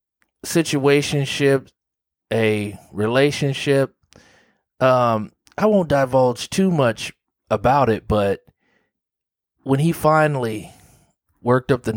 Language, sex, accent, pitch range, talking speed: English, male, American, 105-135 Hz, 90 wpm